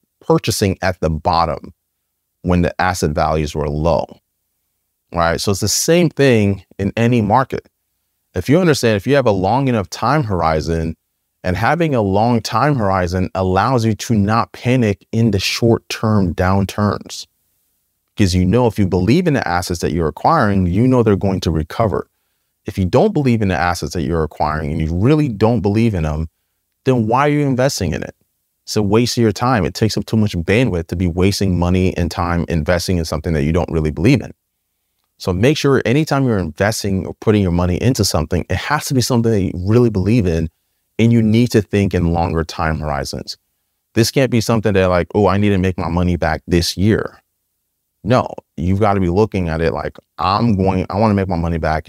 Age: 30-49